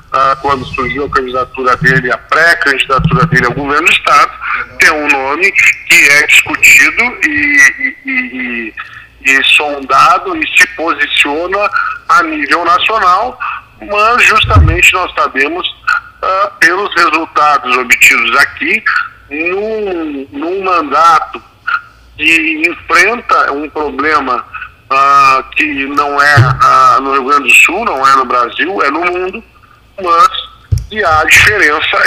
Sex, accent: male, Brazilian